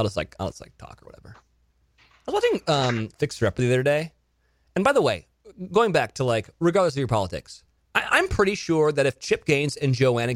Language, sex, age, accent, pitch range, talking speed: English, male, 30-49, American, 135-220 Hz, 230 wpm